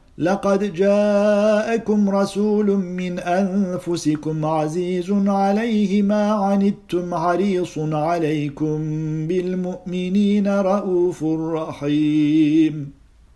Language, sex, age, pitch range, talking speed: Turkish, male, 50-69, 155-195 Hz, 65 wpm